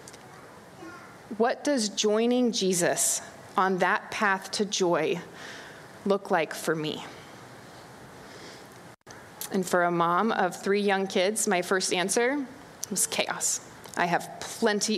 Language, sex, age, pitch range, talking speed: English, female, 20-39, 195-290 Hz, 115 wpm